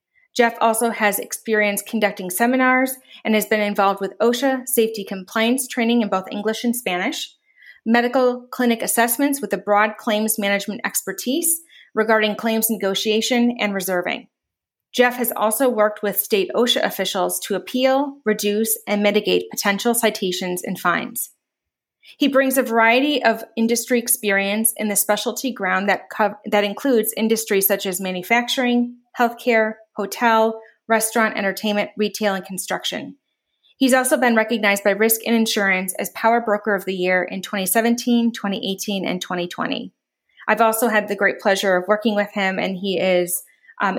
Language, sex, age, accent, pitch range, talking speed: English, female, 30-49, American, 195-240 Hz, 150 wpm